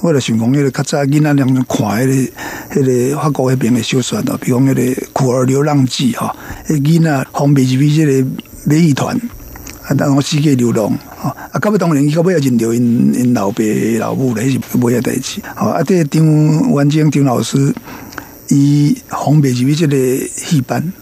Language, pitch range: Chinese, 125-160 Hz